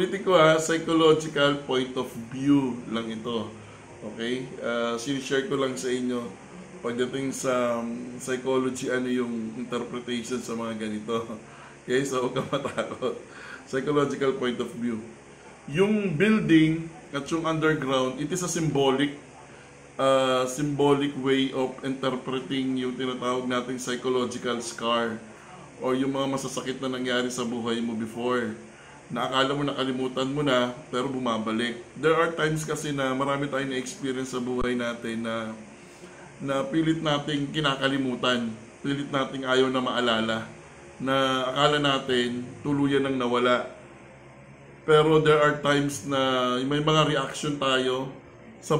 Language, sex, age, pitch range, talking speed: Filipino, male, 20-39, 125-145 Hz, 130 wpm